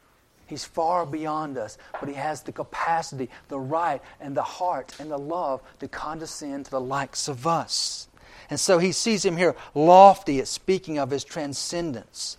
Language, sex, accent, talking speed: English, male, American, 175 wpm